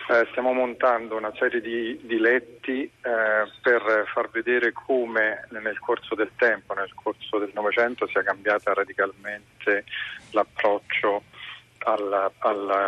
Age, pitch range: 40-59, 110-125 Hz